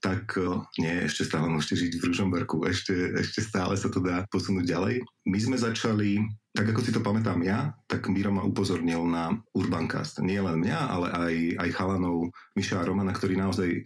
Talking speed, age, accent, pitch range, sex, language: 180 wpm, 30-49, native, 90-120 Hz, male, Czech